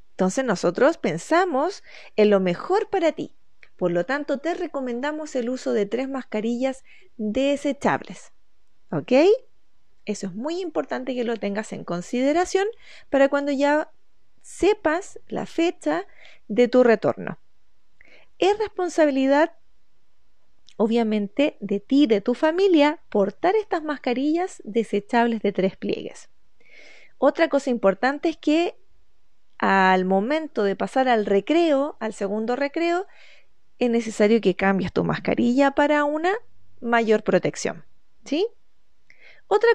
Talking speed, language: 120 wpm, Spanish